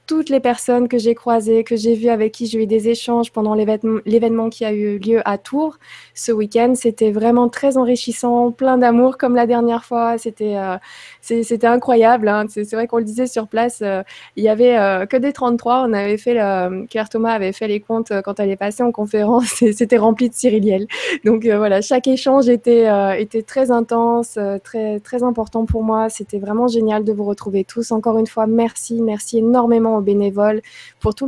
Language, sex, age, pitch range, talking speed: French, female, 20-39, 200-230 Hz, 205 wpm